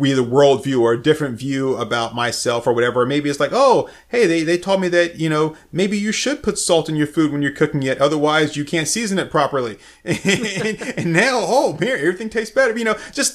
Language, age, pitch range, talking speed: English, 30-49, 115-145 Hz, 235 wpm